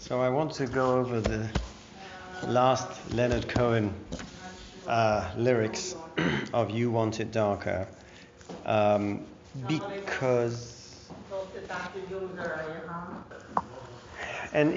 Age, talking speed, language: 50-69, 80 wpm, English